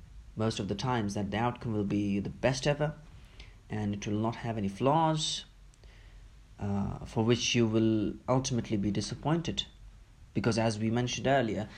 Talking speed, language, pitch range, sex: 165 wpm, English, 100-130 Hz, male